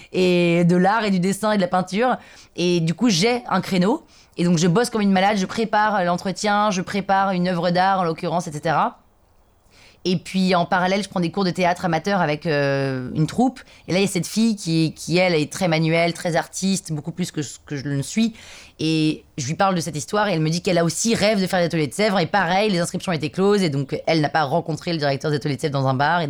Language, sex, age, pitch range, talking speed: French, female, 20-39, 155-190 Hz, 260 wpm